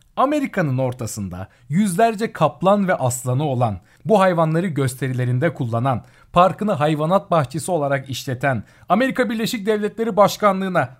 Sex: male